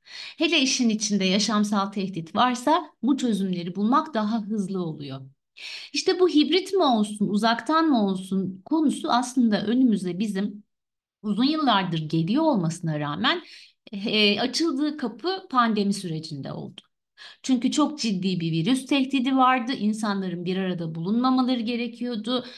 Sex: female